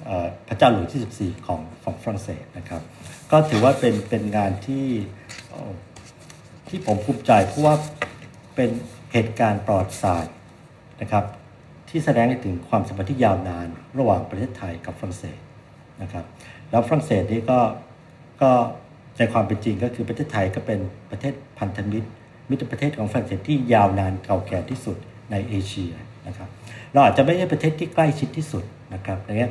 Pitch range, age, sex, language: 95-125 Hz, 60-79, male, Thai